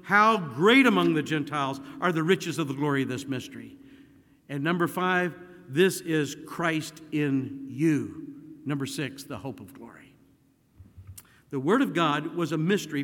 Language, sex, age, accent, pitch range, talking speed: English, male, 50-69, American, 150-215 Hz, 160 wpm